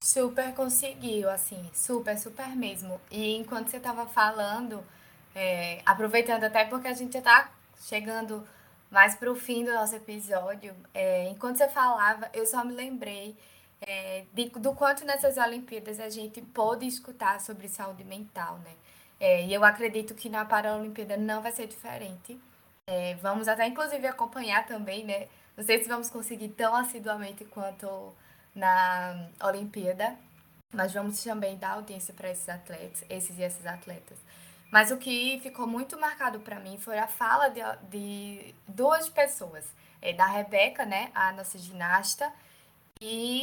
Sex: female